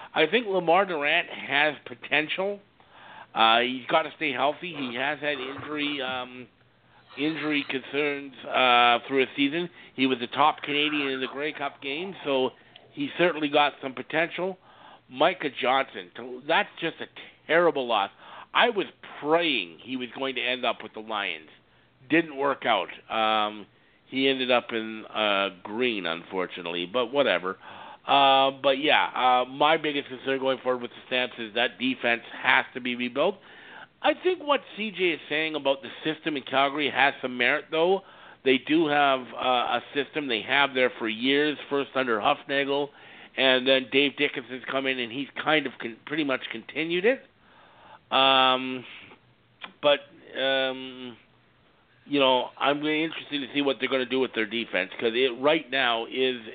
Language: English